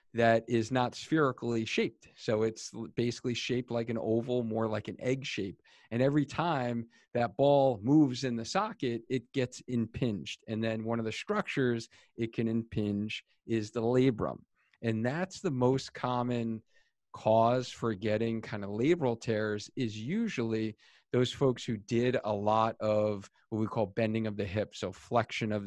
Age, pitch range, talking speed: 40-59, 105-125 Hz, 170 wpm